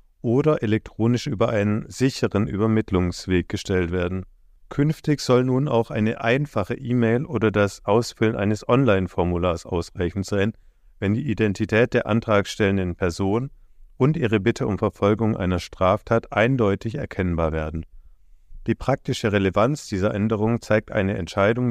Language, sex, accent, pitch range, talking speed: German, male, German, 95-115 Hz, 125 wpm